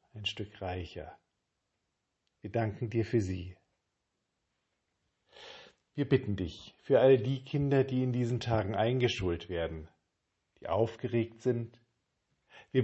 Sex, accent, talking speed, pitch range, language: male, German, 115 wpm, 100-130 Hz, German